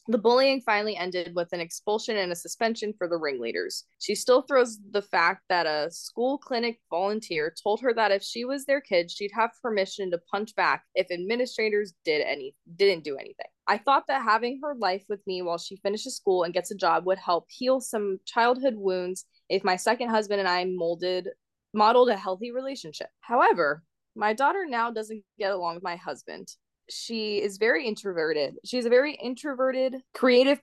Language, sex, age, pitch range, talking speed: English, female, 20-39, 185-250 Hz, 190 wpm